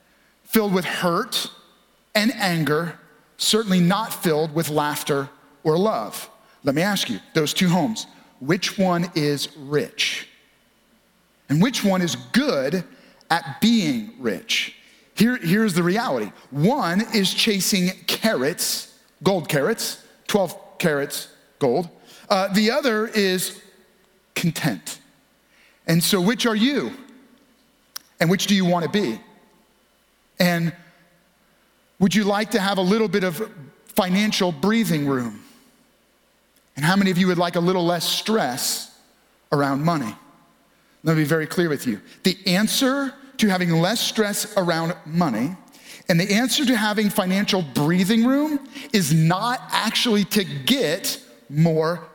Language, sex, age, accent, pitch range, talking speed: English, male, 40-59, American, 170-220 Hz, 130 wpm